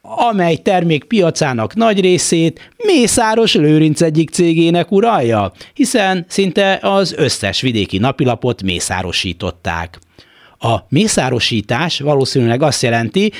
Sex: male